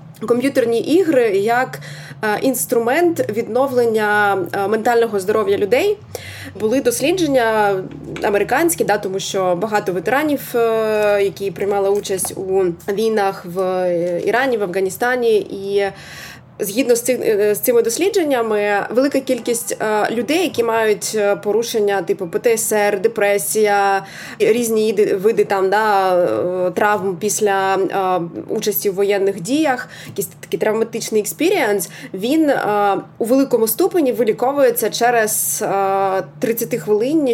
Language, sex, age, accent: Ukrainian, female, 20-39, native